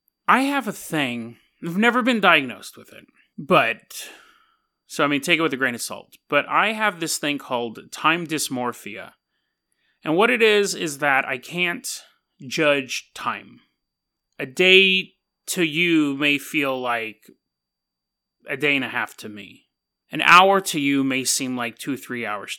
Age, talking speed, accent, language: 30-49, 165 wpm, American, English